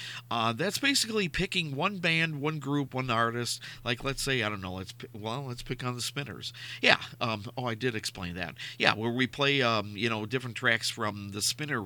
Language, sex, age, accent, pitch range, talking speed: English, male, 50-69, American, 110-135 Hz, 220 wpm